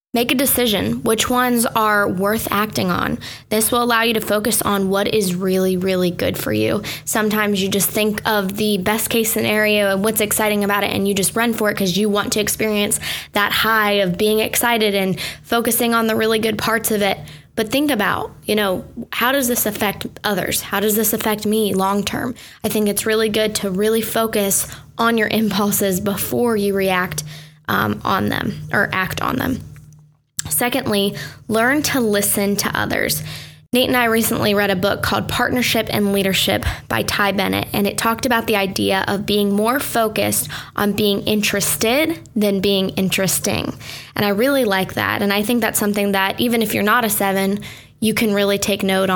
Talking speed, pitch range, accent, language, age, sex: 190 wpm, 195-225 Hz, American, English, 10-29, female